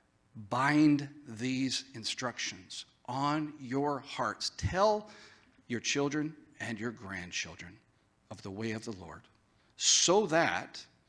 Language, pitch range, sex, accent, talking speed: English, 100-130 Hz, male, American, 110 wpm